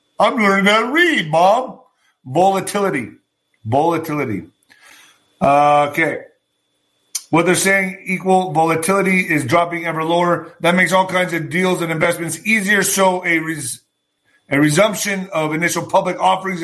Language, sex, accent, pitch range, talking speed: English, male, American, 160-195 Hz, 130 wpm